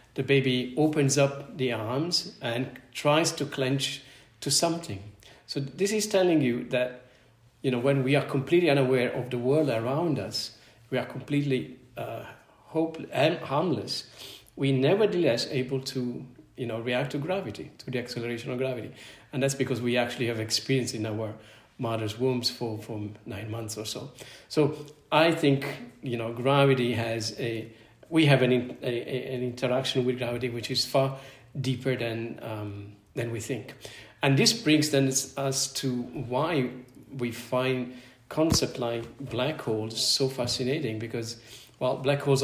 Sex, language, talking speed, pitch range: male, English, 160 wpm, 115-135 Hz